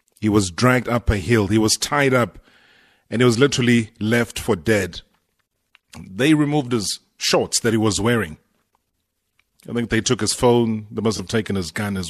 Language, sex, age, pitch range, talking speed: English, male, 30-49, 105-130 Hz, 190 wpm